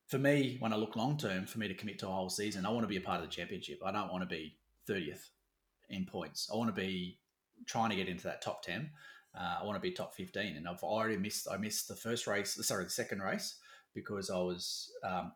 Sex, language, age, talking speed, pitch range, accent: male, English, 30-49, 240 wpm, 95-135 Hz, Australian